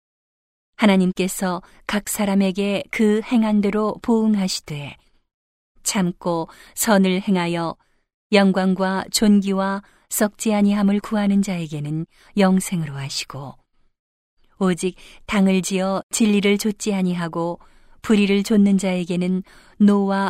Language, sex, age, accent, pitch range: Korean, female, 40-59, native, 180-205 Hz